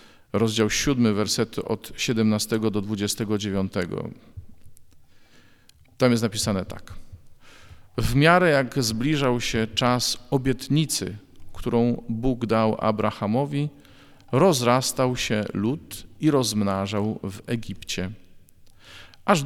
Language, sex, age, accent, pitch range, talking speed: Polish, male, 40-59, native, 105-130 Hz, 95 wpm